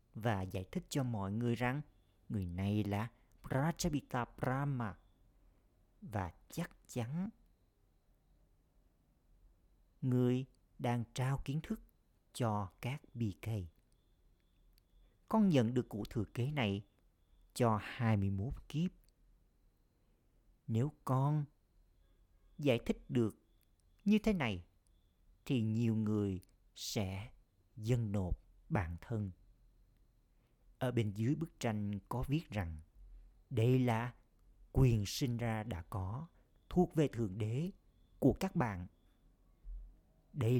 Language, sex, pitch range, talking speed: Vietnamese, male, 95-130 Hz, 110 wpm